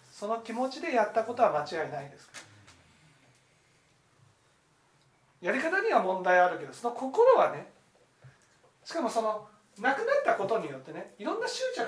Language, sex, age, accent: Japanese, male, 40-59, native